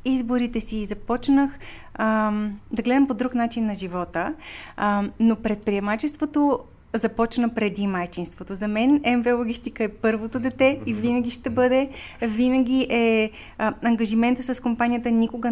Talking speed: 135 wpm